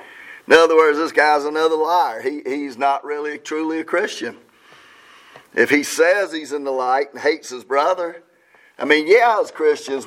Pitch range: 155-220 Hz